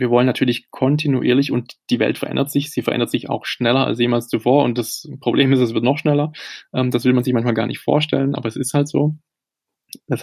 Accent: German